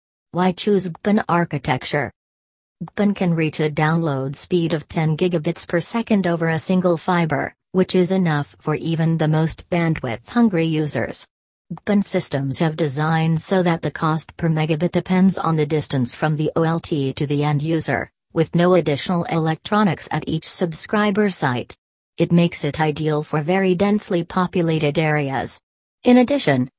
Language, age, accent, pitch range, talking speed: English, 40-59, American, 145-175 Hz, 150 wpm